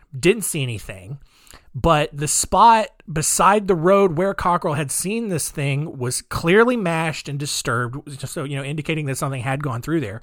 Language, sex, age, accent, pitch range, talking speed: English, male, 30-49, American, 135-185 Hz, 180 wpm